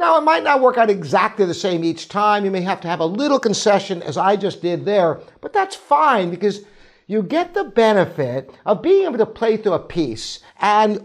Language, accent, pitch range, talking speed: English, American, 180-245 Hz, 225 wpm